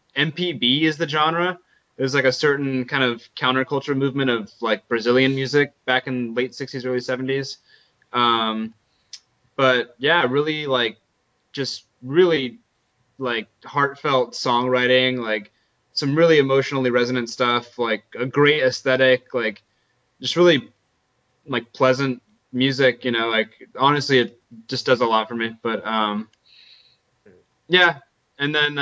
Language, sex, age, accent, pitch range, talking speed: English, male, 20-39, American, 115-140 Hz, 135 wpm